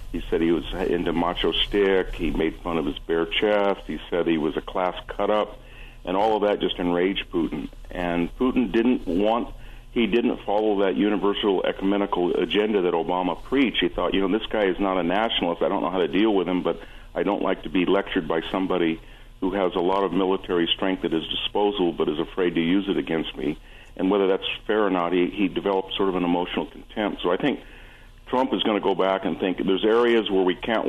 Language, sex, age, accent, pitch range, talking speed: English, male, 60-79, American, 90-100 Hz, 225 wpm